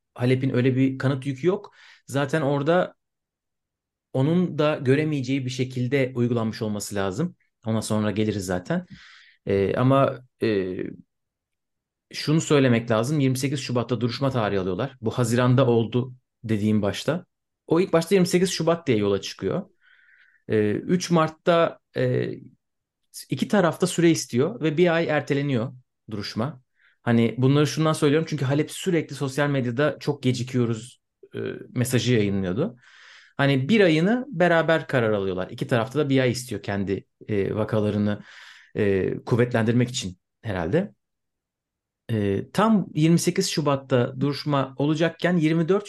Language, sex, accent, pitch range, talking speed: Turkish, male, native, 115-150 Hz, 125 wpm